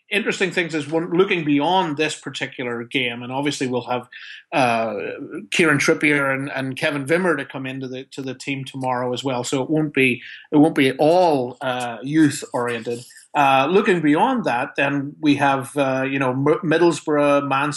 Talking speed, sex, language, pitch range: 180 wpm, male, English, 120-145 Hz